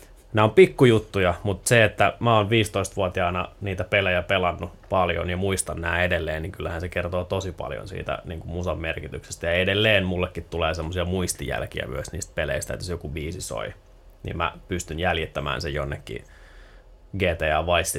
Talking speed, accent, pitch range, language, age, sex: 165 wpm, native, 80-100 Hz, Finnish, 20-39, male